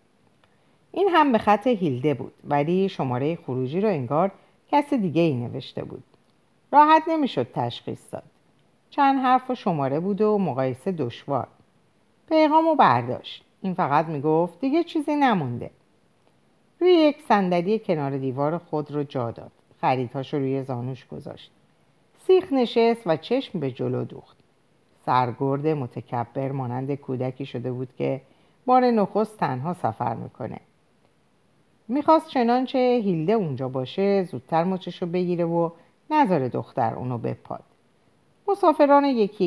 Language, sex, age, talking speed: Persian, female, 50-69, 130 wpm